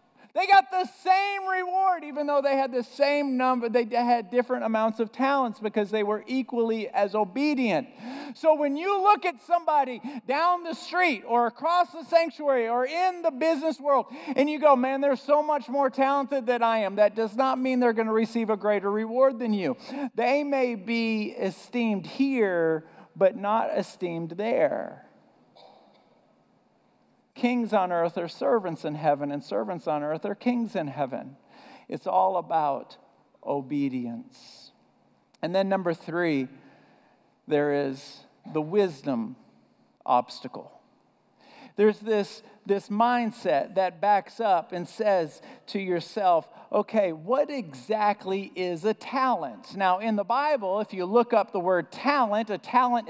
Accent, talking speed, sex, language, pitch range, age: American, 150 wpm, male, English, 205-275 Hz, 50-69